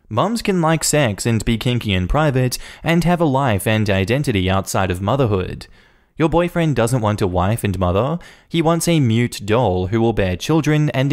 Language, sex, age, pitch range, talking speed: English, male, 10-29, 95-140 Hz, 195 wpm